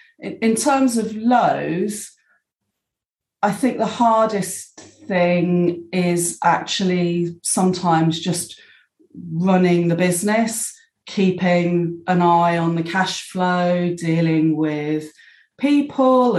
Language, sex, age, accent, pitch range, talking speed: English, female, 30-49, British, 165-200 Hz, 95 wpm